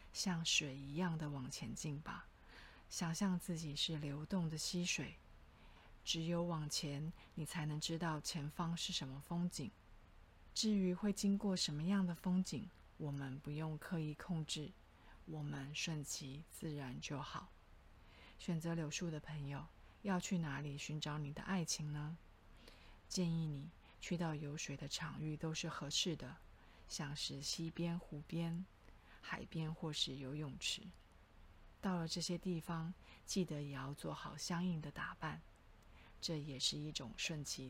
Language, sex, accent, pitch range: Chinese, female, native, 140-170 Hz